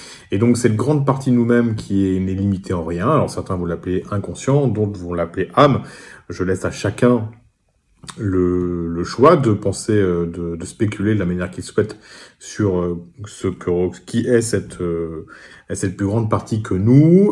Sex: male